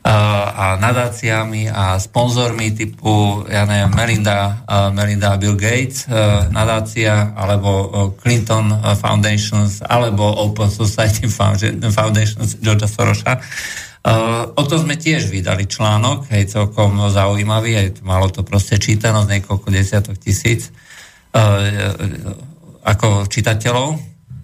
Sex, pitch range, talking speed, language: male, 100-115 Hz, 100 wpm, Slovak